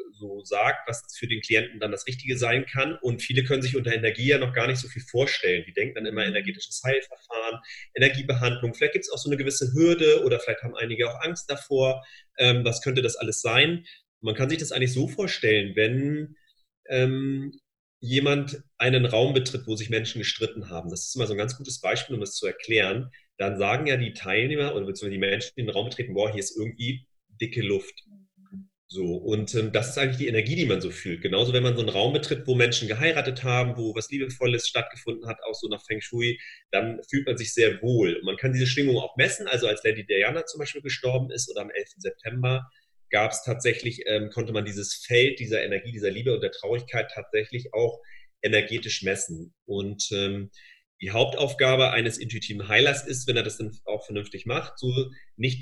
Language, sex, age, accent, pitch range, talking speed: German, male, 30-49, German, 110-140 Hz, 210 wpm